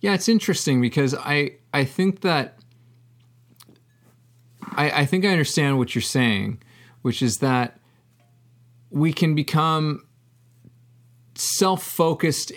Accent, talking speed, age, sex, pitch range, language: American, 110 wpm, 30-49, male, 120-140 Hz, English